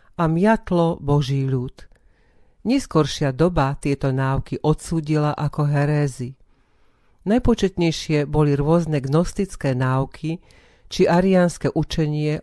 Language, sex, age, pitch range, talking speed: Slovak, female, 40-59, 140-170 Hz, 90 wpm